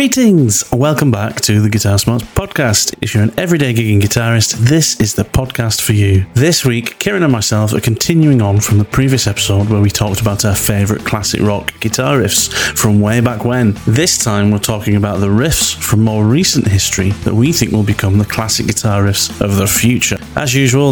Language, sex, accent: English, male, British